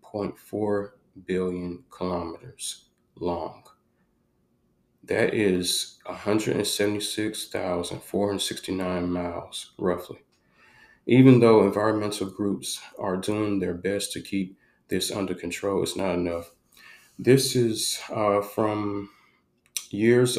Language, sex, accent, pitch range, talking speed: English, male, American, 90-100 Hz, 85 wpm